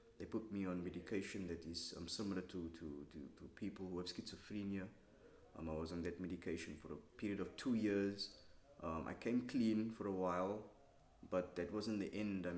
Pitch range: 90-110 Hz